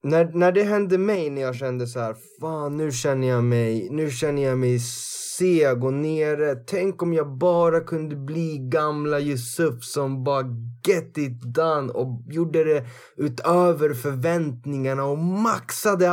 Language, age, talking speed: Swedish, 20-39, 155 wpm